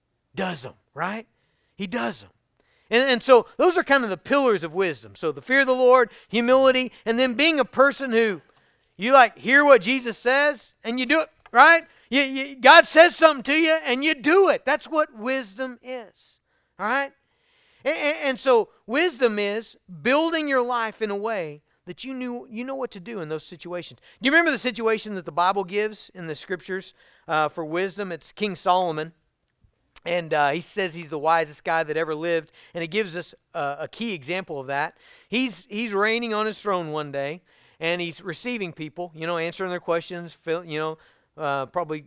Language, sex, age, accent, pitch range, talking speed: English, male, 40-59, American, 160-245 Hz, 200 wpm